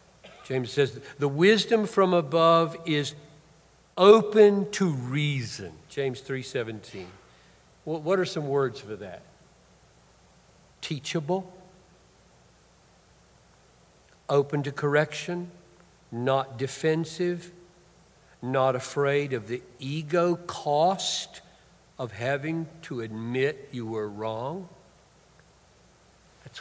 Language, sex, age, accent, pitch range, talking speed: English, male, 60-79, American, 120-160 Hz, 90 wpm